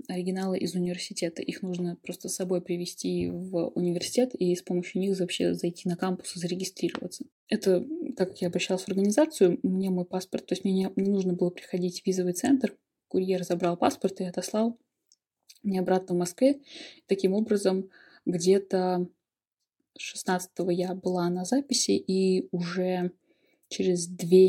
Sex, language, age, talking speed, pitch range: female, Russian, 20-39, 155 wpm, 180-200 Hz